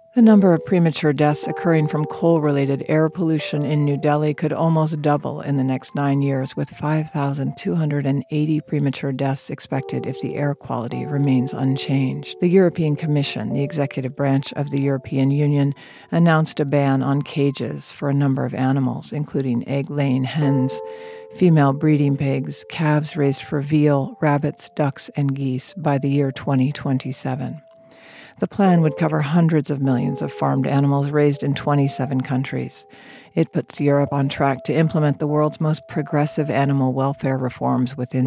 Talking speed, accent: 155 wpm, American